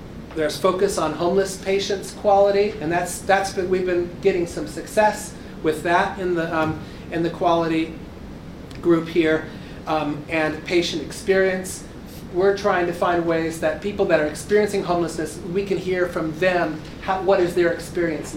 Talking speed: 165 wpm